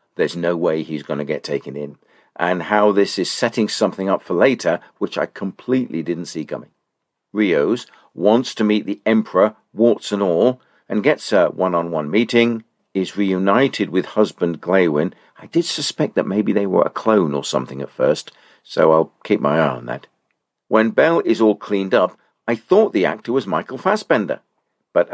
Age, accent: 50-69, British